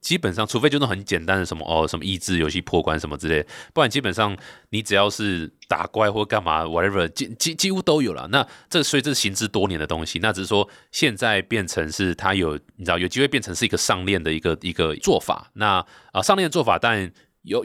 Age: 20-39